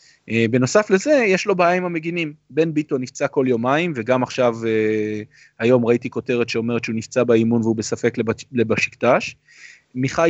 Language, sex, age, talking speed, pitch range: Hebrew, male, 30-49, 155 wpm, 115-145 Hz